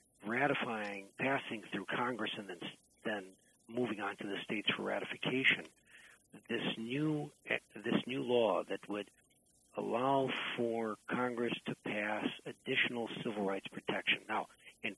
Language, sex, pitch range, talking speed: English, male, 100-120 Hz, 130 wpm